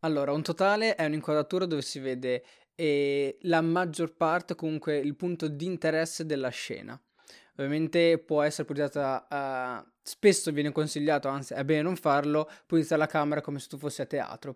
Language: Italian